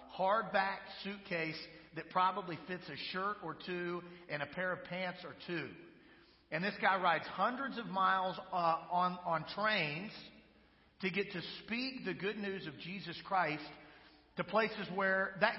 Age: 40-59